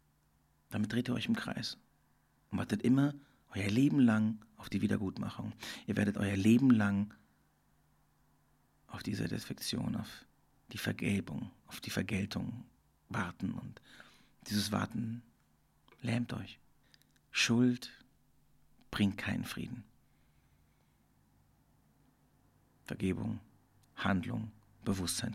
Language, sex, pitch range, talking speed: German, male, 95-120 Hz, 100 wpm